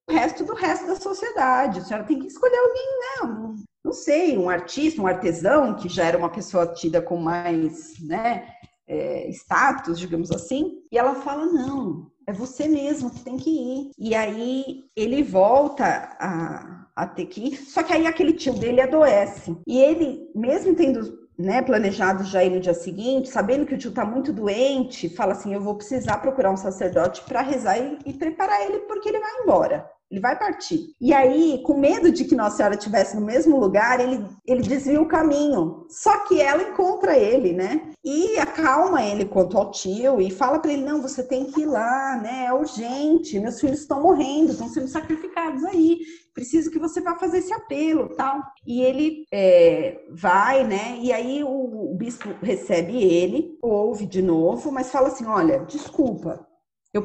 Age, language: 40-59, Portuguese